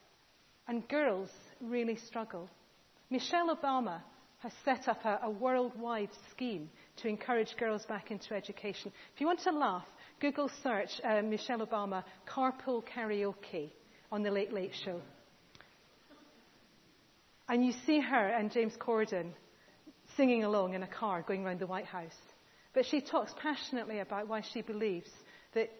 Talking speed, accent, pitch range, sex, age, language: 145 wpm, British, 200-255 Hz, female, 40-59, English